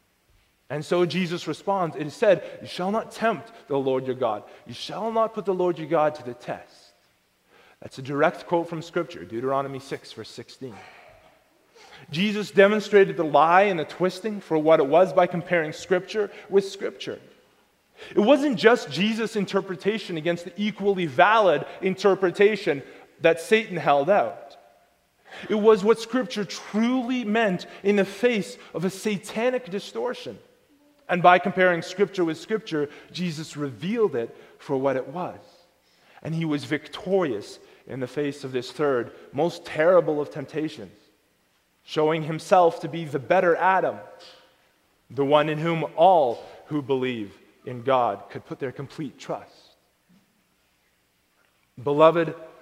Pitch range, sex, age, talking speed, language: 150-200 Hz, male, 30-49, 145 wpm, English